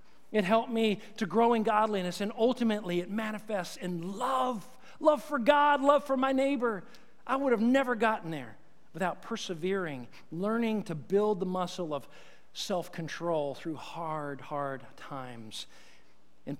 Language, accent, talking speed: English, American, 145 wpm